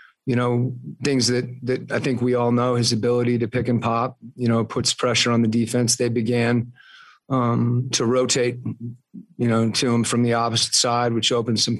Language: English